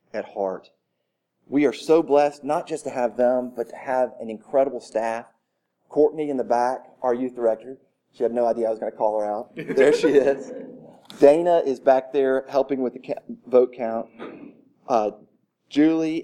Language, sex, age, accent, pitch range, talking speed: English, male, 40-59, American, 110-140 Hz, 180 wpm